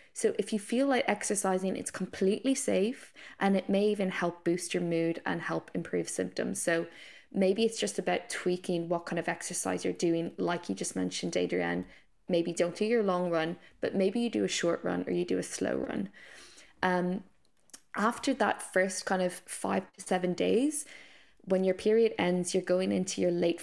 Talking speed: 195 wpm